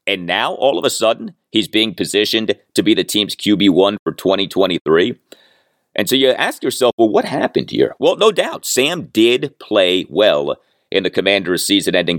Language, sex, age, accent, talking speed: English, male, 40-59, American, 175 wpm